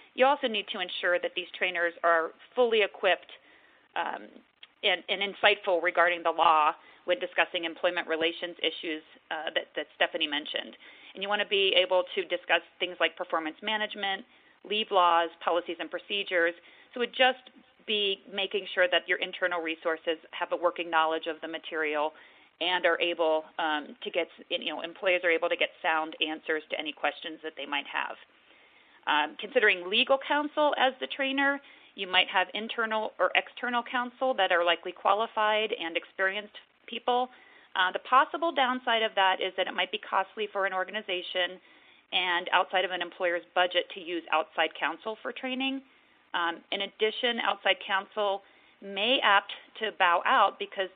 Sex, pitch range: female, 170-215 Hz